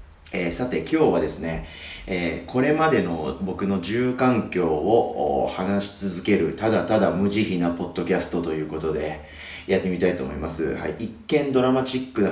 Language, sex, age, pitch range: Japanese, male, 30-49, 80-110 Hz